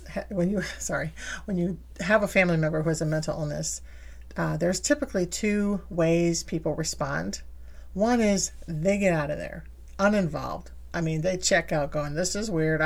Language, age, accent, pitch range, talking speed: English, 40-59, American, 150-195 Hz, 175 wpm